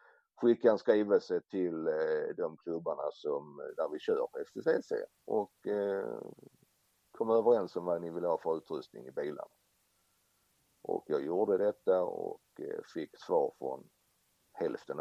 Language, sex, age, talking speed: Swedish, male, 60-79, 130 wpm